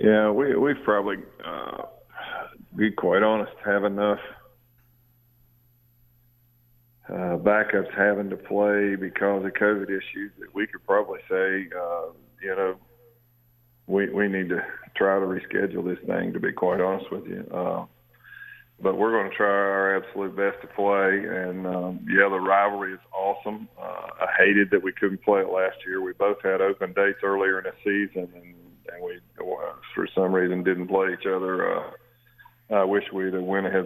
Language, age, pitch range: English, 50-69, 95-115 Hz